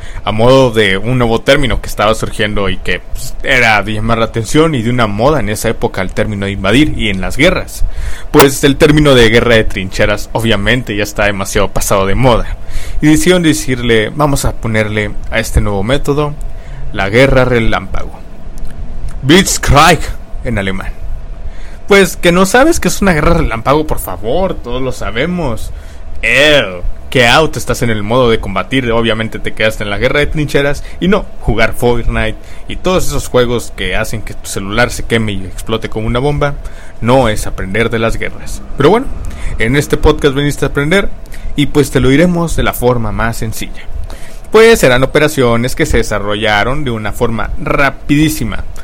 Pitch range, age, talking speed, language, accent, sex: 105-140 Hz, 30-49, 180 wpm, Spanish, Mexican, male